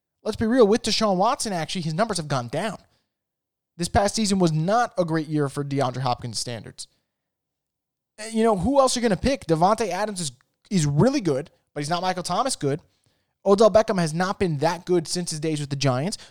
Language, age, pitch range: English, 20-39, 155-220 Hz